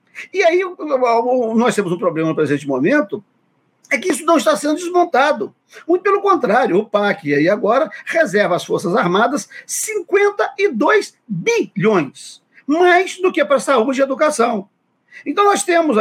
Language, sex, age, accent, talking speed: Portuguese, male, 50-69, Brazilian, 155 wpm